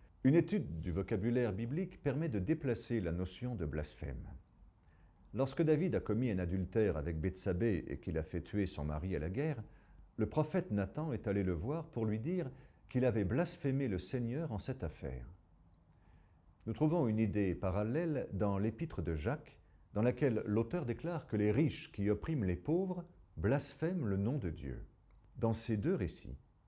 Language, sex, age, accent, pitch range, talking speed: French, male, 50-69, French, 90-130 Hz, 175 wpm